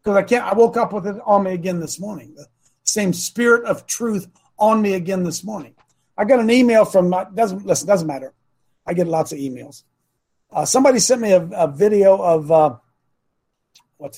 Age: 50-69